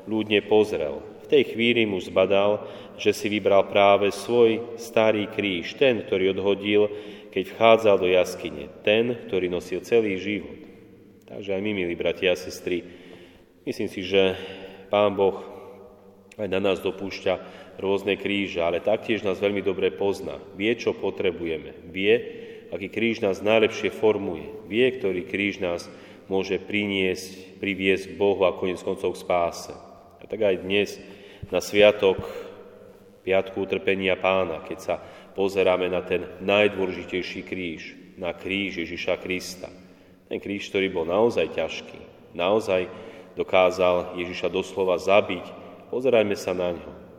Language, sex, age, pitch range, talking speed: Slovak, male, 30-49, 90-105 Hz, 135 wpm